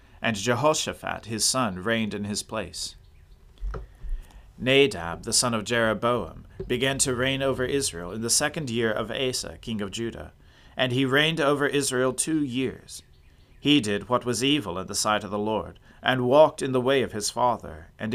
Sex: male